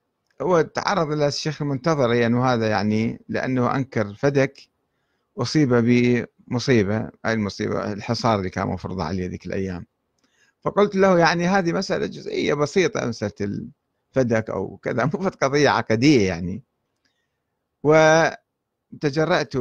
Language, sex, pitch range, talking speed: Arabic, male, 110-150 Hz, 115 wpm